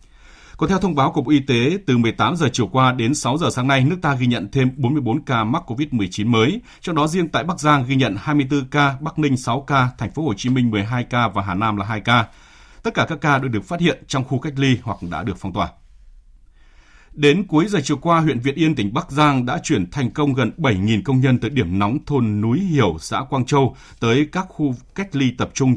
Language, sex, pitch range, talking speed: Vietnamese, male, 110-150 Hz, 250 wpm